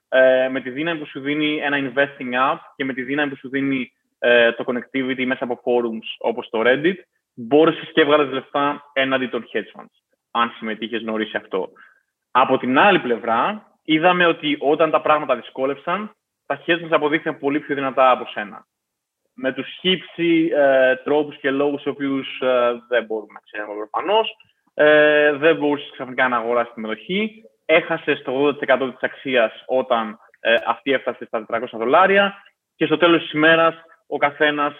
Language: Greek